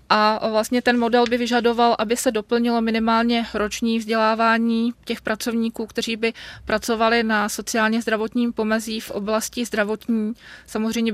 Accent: native